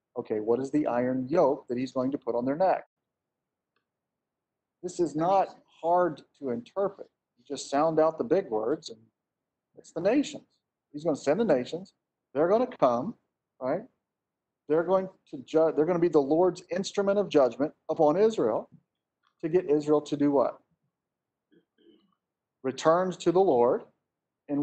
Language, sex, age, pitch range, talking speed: English, male, 40-59, 135-170 Hz, 160 wpm